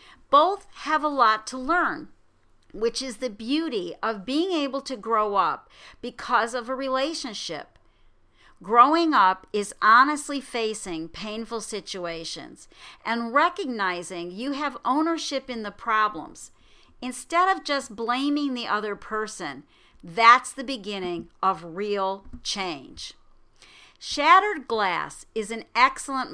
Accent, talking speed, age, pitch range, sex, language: American, 120 wpm, 50-69, 210-290 Hz, female, English